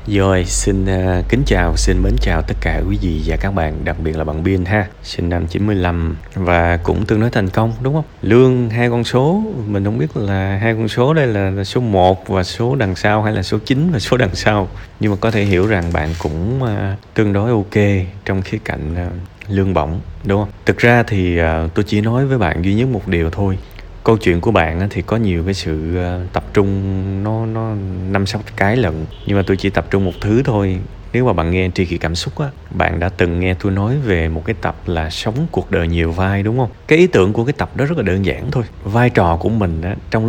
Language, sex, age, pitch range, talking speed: Vietnamese, male, 20-39, 85-110 Hz, 245 wpm